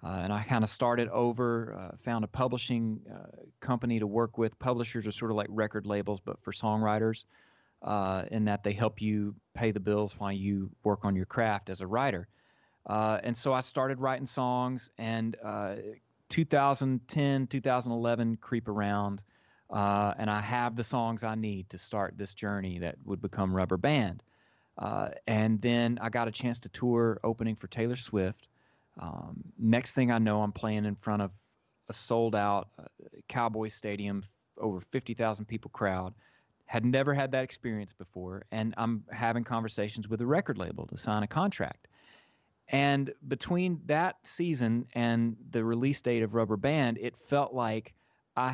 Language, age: English, 40-59